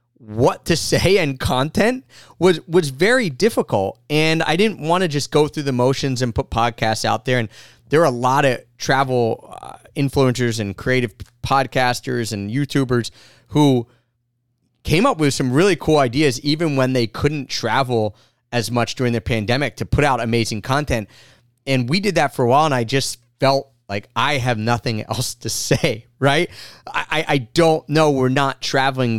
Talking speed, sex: 180 wpm, male